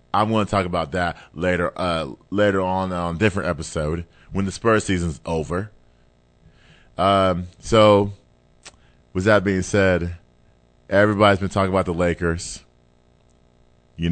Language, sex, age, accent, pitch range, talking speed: English, male, 30-49, American, 85-115 Hz, 140 wpm